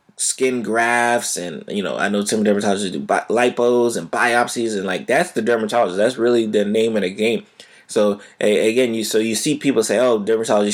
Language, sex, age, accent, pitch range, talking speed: English, male, 20-39, American, 100-120 Hz, 205 wpm